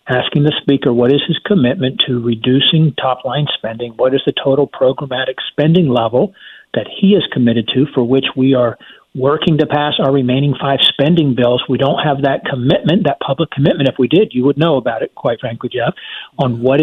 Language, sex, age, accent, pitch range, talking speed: English, male, 50-69, American, 125-150 Hz, 200 wpm